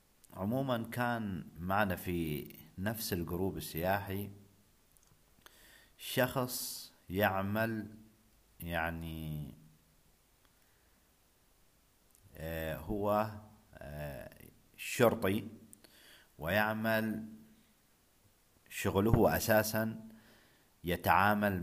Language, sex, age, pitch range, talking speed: Arabic, male, 50-69, 85-110 Hz, 45 wpm